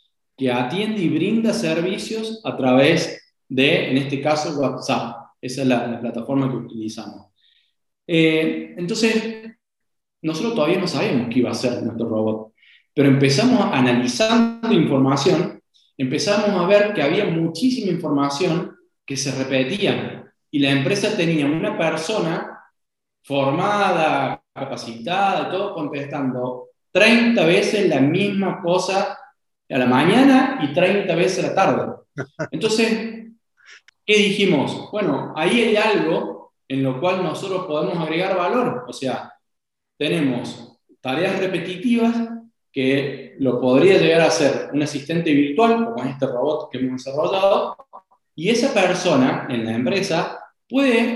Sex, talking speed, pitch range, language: male, 130 wpm, 135-205 Hz, Spanish